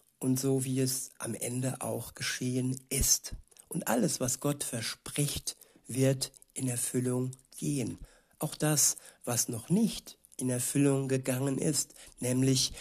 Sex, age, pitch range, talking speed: male, 60-79, 125-140 Hz, 130 wpm